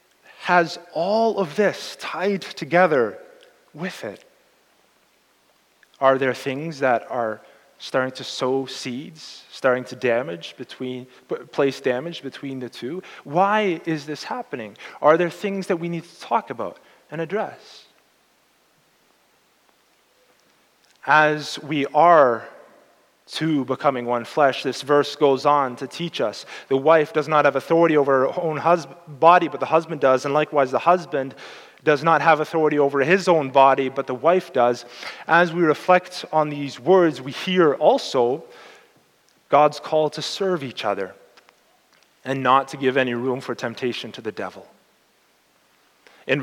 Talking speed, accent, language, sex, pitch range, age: 145 wpm, American, English, male, 130-170 Hz, 30-49